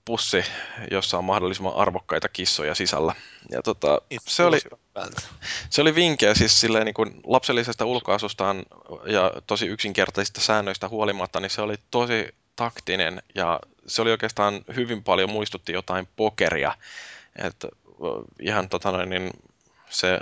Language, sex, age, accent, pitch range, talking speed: Finnish, male, 20-39, native, 90-110 Hz, 125 wpm